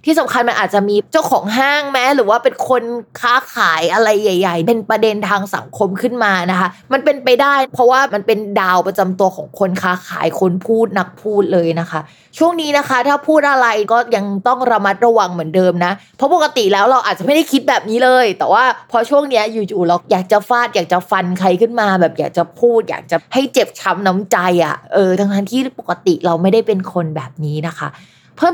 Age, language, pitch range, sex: 20-39, Thai, 190-255 Hz, female